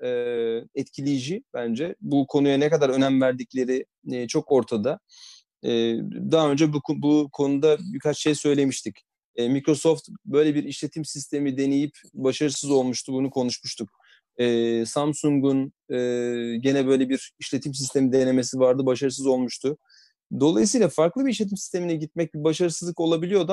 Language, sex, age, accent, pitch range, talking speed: Turkish, male, 30-49, native, 135-180 Hz, 115 wpm